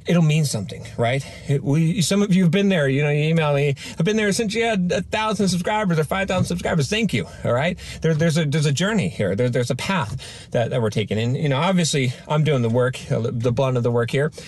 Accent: American